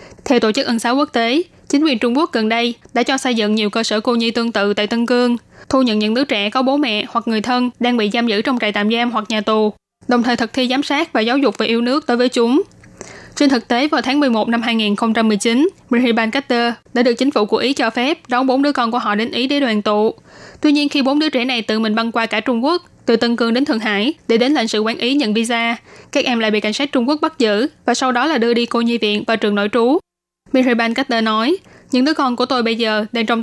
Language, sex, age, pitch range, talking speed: Vietnamese, female, 10-29, 225-265 Hz, 280 wpm